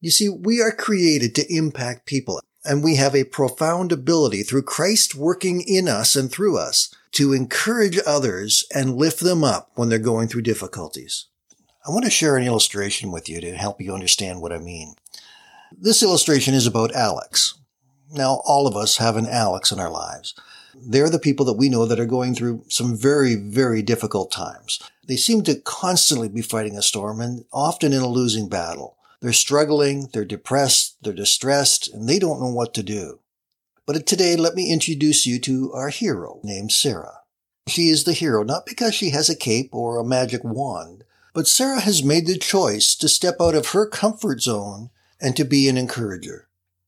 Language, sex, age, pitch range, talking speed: English, male, 50-69, 110-155 Hz, 190 wpm